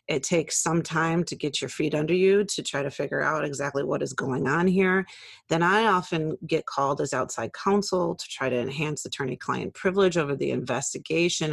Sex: female